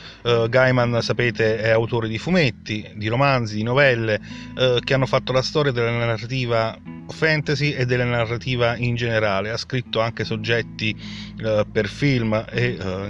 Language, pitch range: Italian, 110-130 Hz